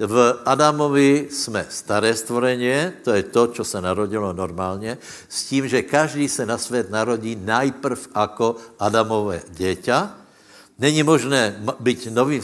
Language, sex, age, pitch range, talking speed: Slovak, male, 70-89, 110-135 Hz, 135 wpm